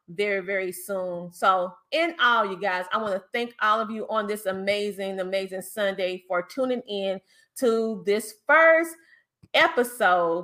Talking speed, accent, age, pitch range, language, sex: 155 wpm, American, 30-49, 200-300 Hz, English, female